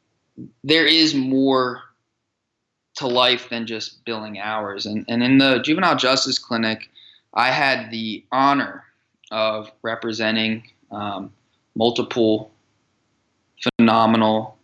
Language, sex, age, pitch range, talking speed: English, male, 20-39, 115-130 Hz, 105 wpm